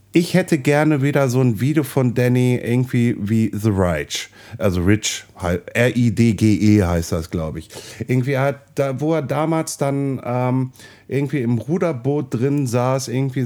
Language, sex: German, male